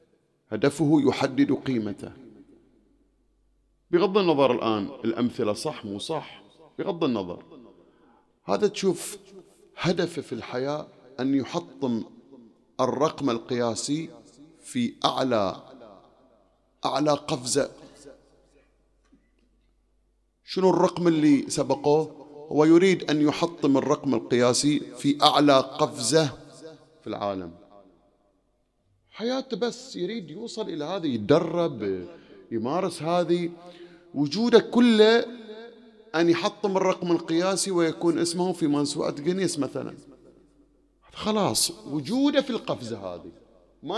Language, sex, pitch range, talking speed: English, male, 145-205 Hz, 90 wpm